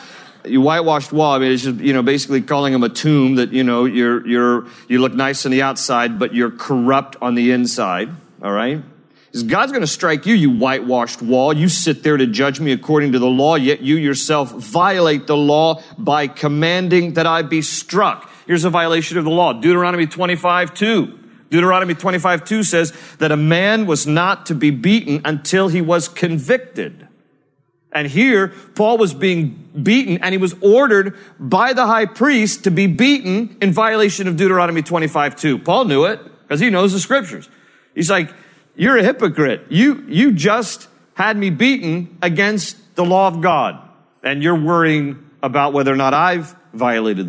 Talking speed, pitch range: 180 wpm, 140-190 Hz